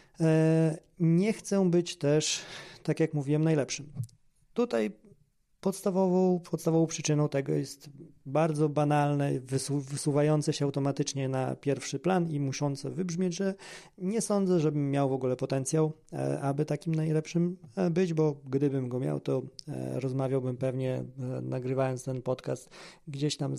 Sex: male